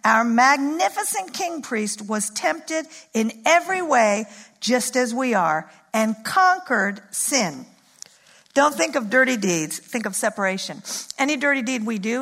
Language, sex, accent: English, female, American